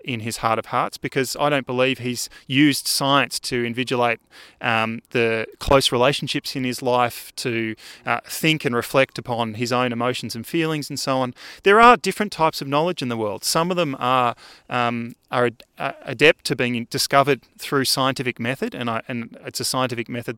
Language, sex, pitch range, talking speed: English, male, 120-145 Hz, 190 wpm